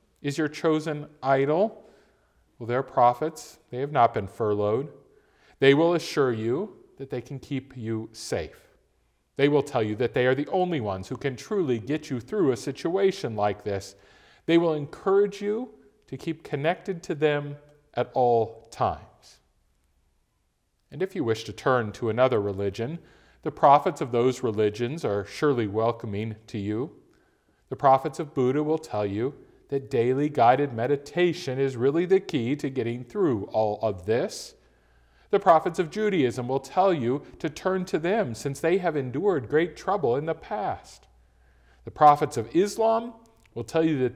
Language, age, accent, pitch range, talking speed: English, 40-59, American, 115-155 Hz, 165 wpm